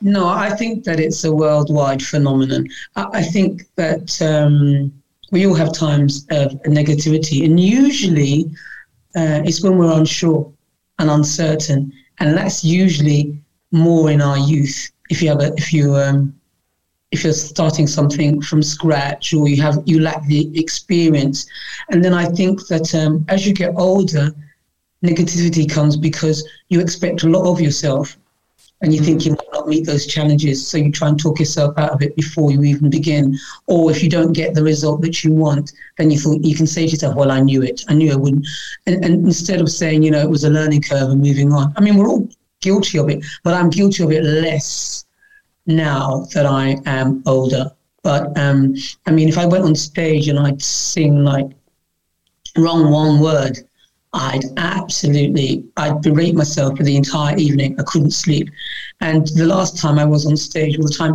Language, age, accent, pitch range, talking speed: English, 30-49, British, 145-165 Hz, 185 wpm